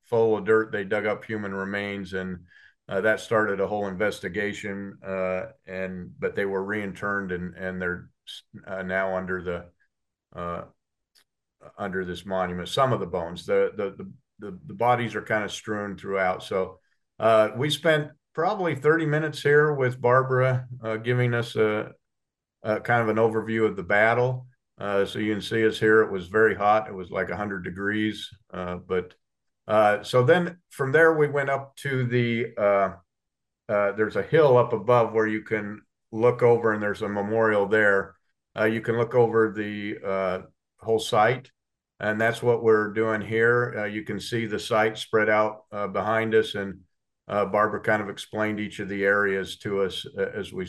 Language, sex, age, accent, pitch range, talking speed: English, male, 50-69, American, 95-115 Hz, 185 wpm